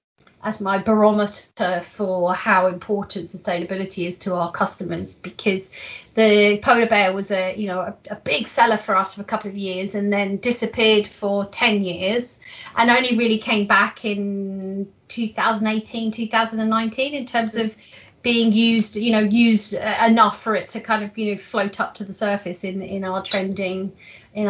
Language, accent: English, British